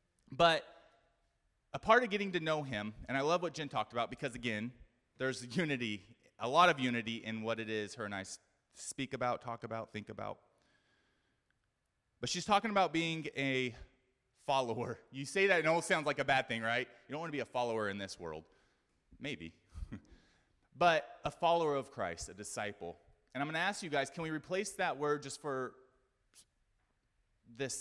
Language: English